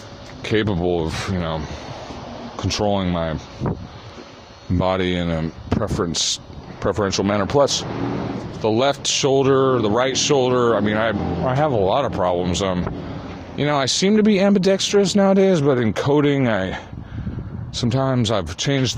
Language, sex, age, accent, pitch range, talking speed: English, male, 30-49, American, 95-125 Hz, 140 wpm